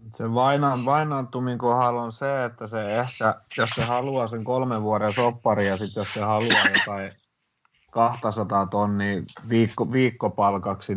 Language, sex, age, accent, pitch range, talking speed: Finnish, male, 30-49, native, 100-115 Hz, 135 wpm